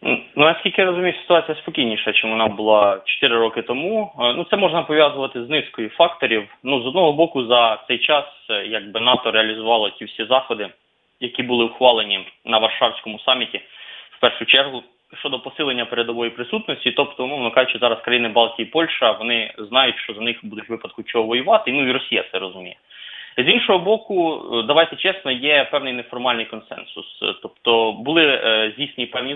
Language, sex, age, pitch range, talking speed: English, male, 20-39, 115-150 Hz, 170 wpm